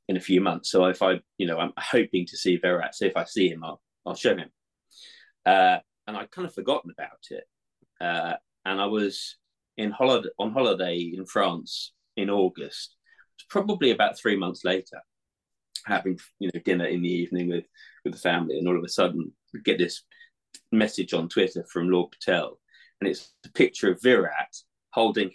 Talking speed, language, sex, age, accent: 190 wpm, English, male, 30-49, British